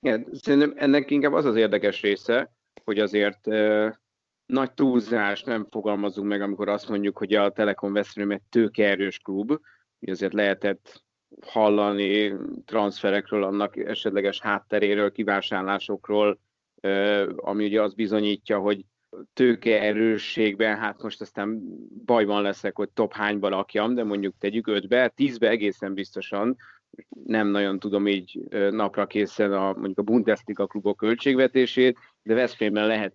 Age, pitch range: 30-49, 100-115 Hz